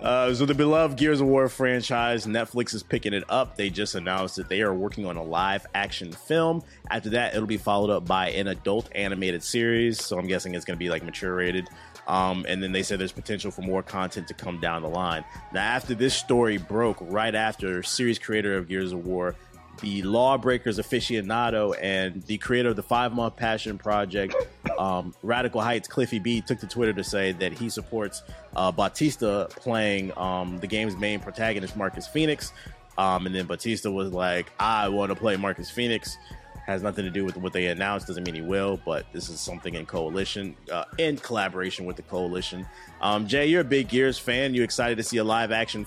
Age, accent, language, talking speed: 30-49, American, English, 210 wpm